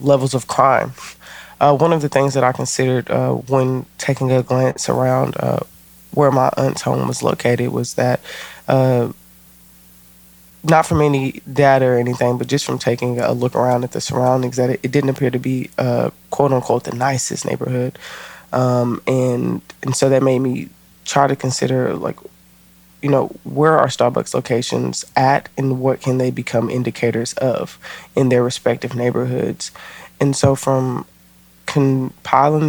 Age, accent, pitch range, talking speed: 20-39, American, 120-135 Hz, 165 wpm